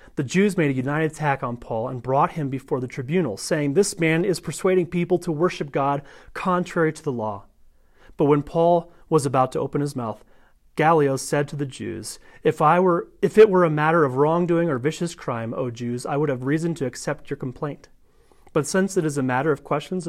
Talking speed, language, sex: 215 wpm, English, male